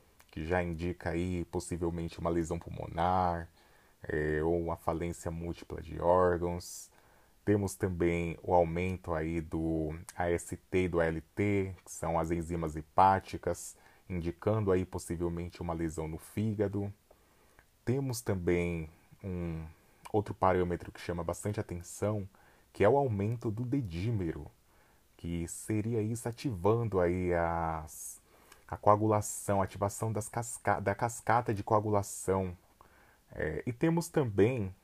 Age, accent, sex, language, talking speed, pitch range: 20-39, Brazilian, male, Portuguese, 120 wpm, 85-110 Hz